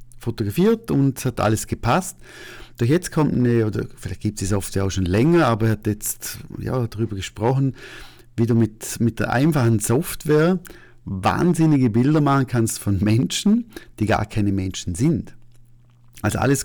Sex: male